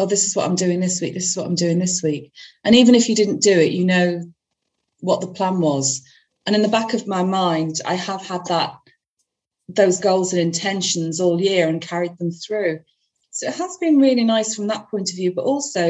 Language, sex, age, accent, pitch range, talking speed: English, female, 40-59, British, 175-210 Hz, 235 wpm